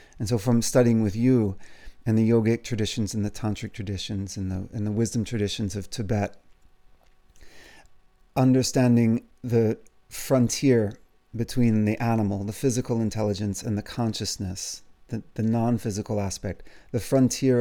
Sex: male